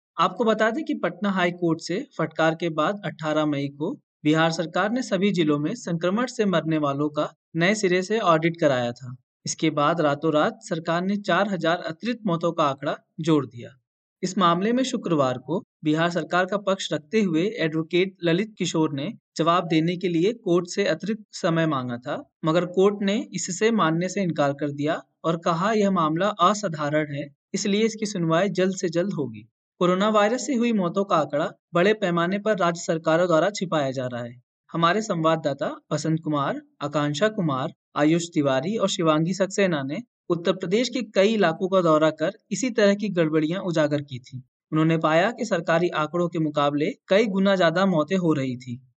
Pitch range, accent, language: 155-195 Hz, native, Hindi